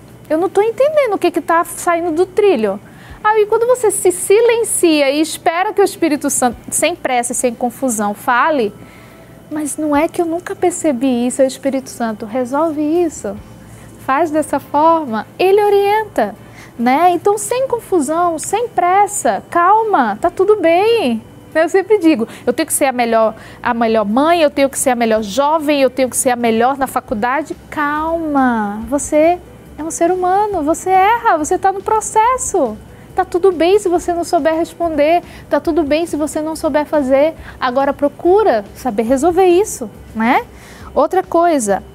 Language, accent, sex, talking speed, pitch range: Portuguese, Brazilian, female, 170 wpm, 265-355 Hz